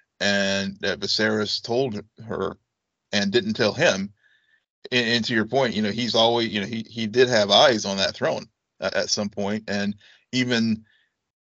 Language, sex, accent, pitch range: English, male, American, 100-115 Hz